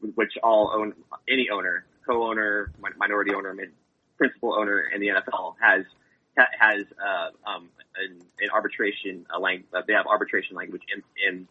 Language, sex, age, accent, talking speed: English, male, 20-39, American, 145 wpm